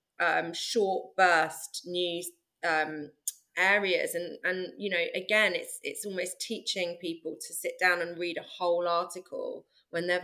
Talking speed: 150 wpm